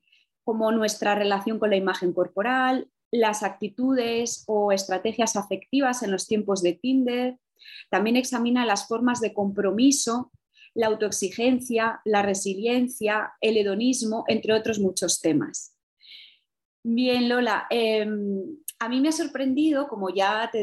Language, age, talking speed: Spanish, 20-39, 130 wpm